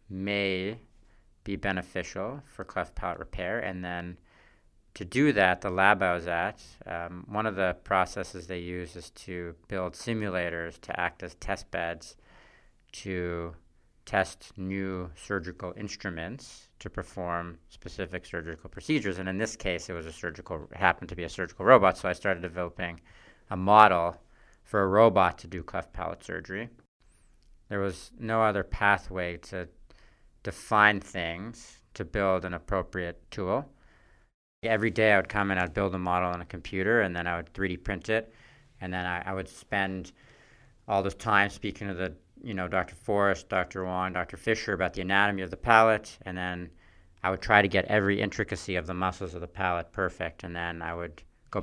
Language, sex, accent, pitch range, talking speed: English, male, American, 90-100 Hz, 175 wpm